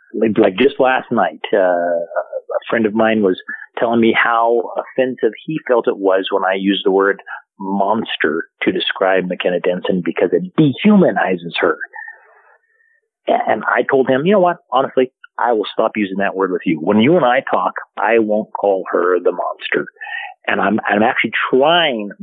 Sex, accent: male, American